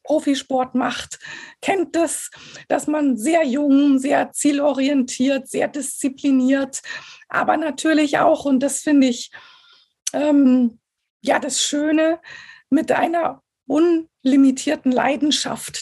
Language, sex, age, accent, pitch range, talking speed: German, female, 50-69, German, 255-305 Hz, 105 wpm